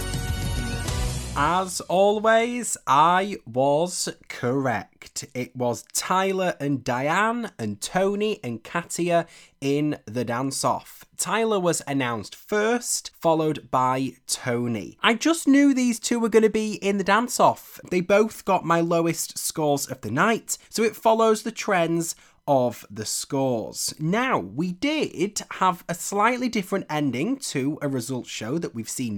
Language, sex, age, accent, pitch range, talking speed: English, male, 20-39, British, 140-210 Hz, 140 wpm